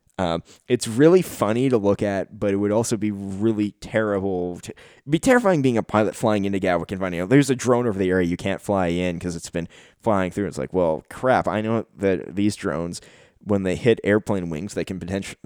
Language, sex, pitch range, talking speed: English, male, 90-115 Hz, 220 wpm